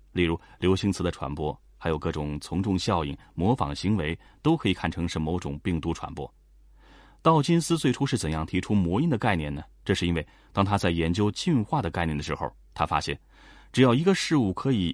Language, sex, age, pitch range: Chinese, male, 30-49, 80-120 Hz